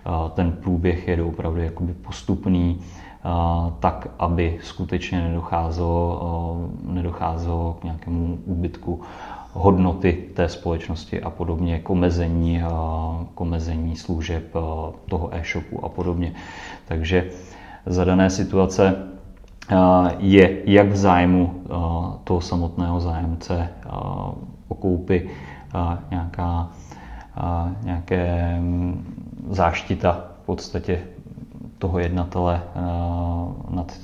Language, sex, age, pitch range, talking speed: Czech, male, 30-49, 85-90 Hz, 95 wpm